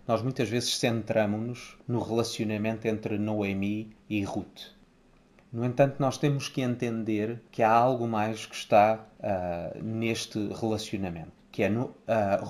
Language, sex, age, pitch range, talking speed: Portuguese, male, 30-49, 110-130 Hz, 140 wpm